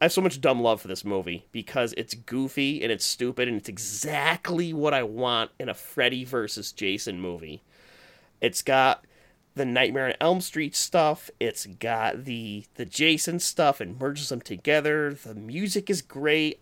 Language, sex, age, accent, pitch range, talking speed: English, male, 30-49, American, 115-155 Hz, 175 wpm